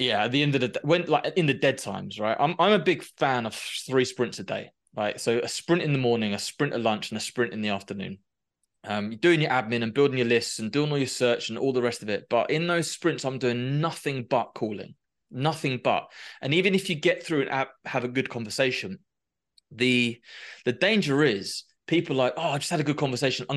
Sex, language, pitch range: male, English, 120-155 Hz